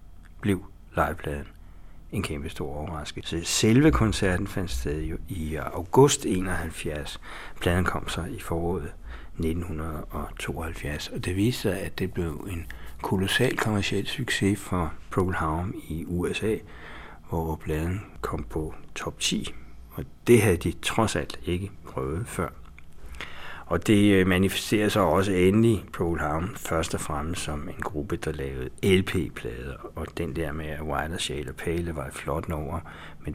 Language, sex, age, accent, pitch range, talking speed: Danish, male, 60-79, native, 75-95 Hz, 145 wpm